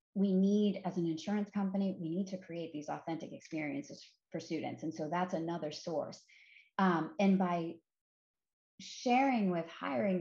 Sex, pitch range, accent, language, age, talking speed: female, 160-195 Hz, American, English, 30-49, 155 wpm